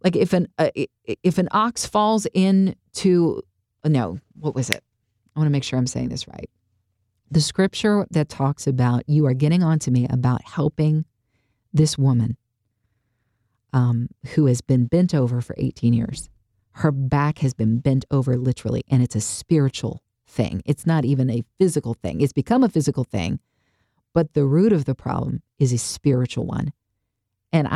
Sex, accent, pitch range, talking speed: female, American, 120-155 Hz, 175 wpm